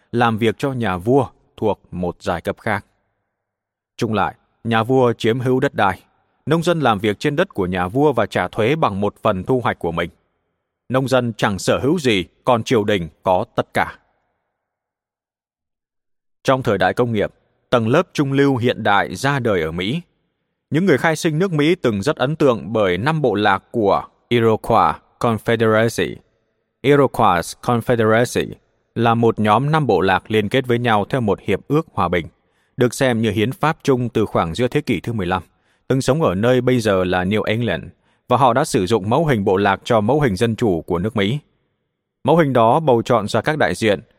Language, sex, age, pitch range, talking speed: Vietnamese, male, 20-39, 100-130 Hz, 200 wpm